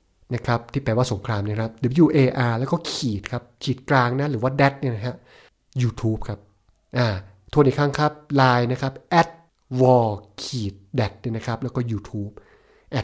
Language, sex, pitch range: Thai, male, 120-160 Hz